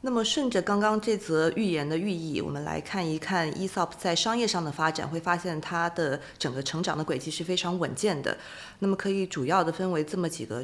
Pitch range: 155-190 Hz